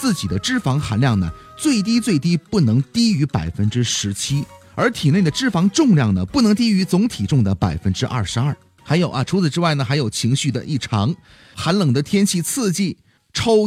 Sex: male